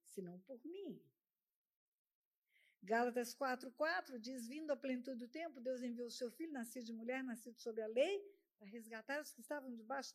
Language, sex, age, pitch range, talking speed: Portuguese, female, 50-69, 225-315 Hz, 175 wpm